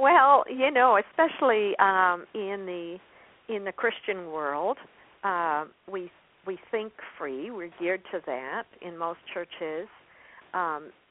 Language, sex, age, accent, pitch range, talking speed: English, female, 50-69, American, 170-230 Hz, 135 wpm